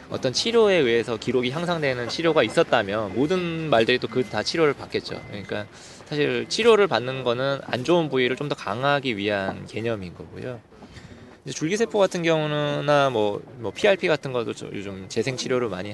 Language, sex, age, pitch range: Korean, male, 20-39, 110-155 Hz